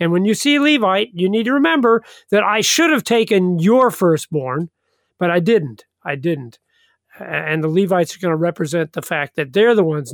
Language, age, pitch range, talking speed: English, 50-69, 155-200 Hz, 205 wpm